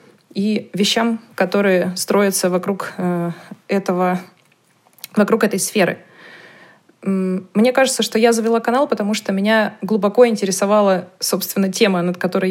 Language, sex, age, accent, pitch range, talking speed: Russian, female, 20-39, native, 185-220 Hz, 110 wpm